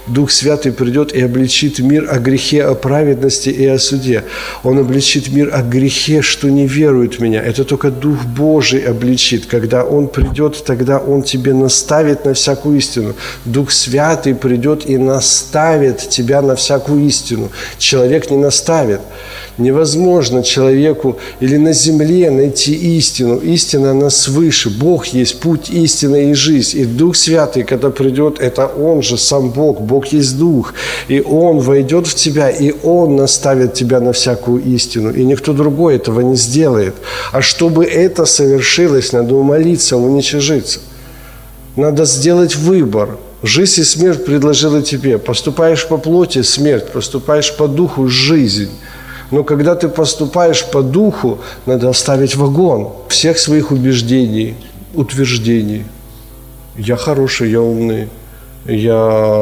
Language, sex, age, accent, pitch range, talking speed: Ukrainian, male, 50-69, native, 120-150 Hz, 140 wpm